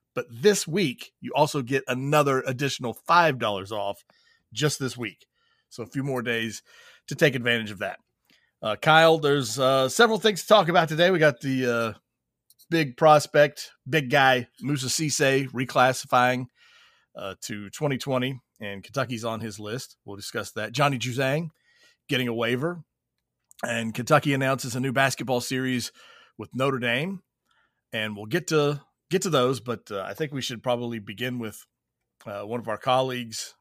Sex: male